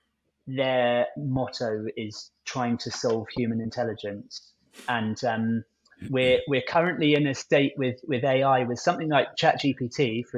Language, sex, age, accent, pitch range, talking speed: English, male, 30-49, British, 115-135 Hz, 145 wpm